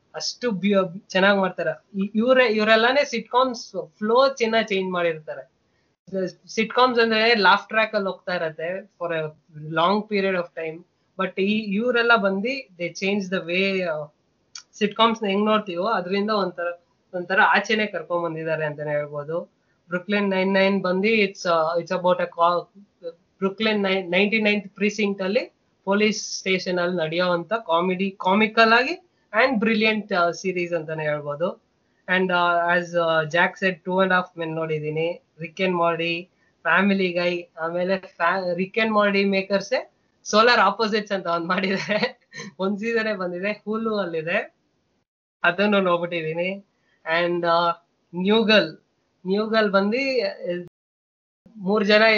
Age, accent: 20-39, native